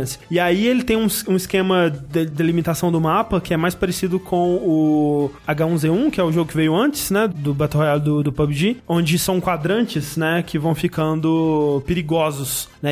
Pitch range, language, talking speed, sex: 155-185 Hz, Portuguese, 195 wpm, male